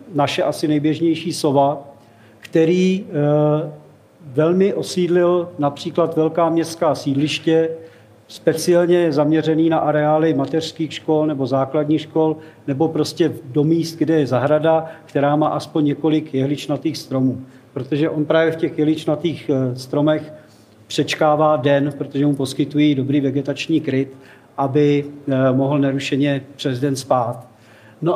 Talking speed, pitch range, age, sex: 115 wpm, 145-170 Hz, 40-59, male